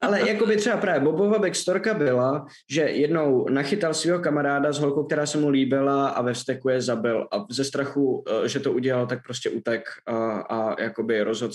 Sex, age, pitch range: male, 20-39, 125-160 Hz